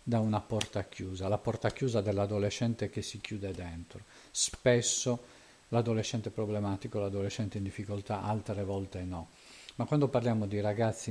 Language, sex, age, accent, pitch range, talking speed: Italian, male, 50-69, native, 95-110 Hz, 140 wpm